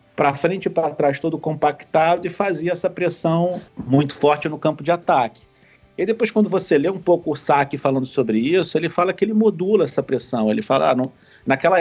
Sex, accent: male, Brazilian